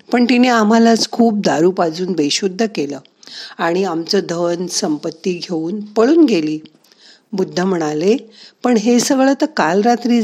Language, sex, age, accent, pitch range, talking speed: Marathi, female, 50-69, native, 175-235 Hz, 135 wpm